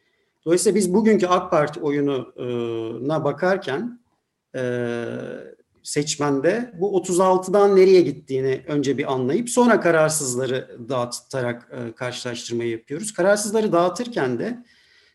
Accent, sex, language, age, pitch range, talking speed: native, male, Turkish, 40-59, 140-185 Hz, 90 wpm